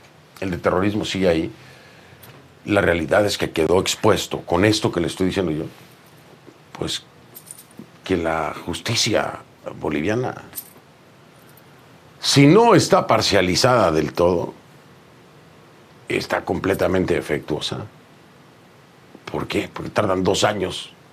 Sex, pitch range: male, 80-120 Hz